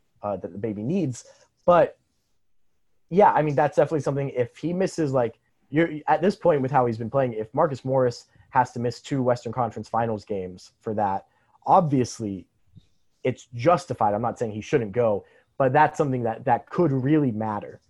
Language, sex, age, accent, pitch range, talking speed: English, male, 20-39, American, 115-140 Hz, 185 wpm